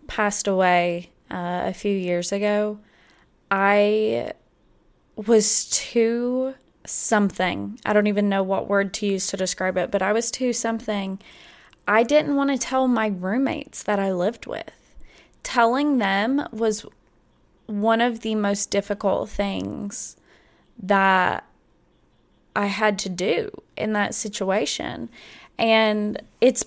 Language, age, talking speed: English, 20-39, 130 wpm